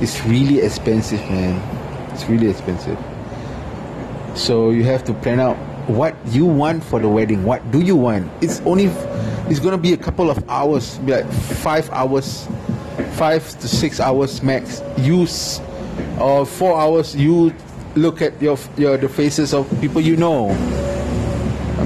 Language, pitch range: Malay, 115-155 Hz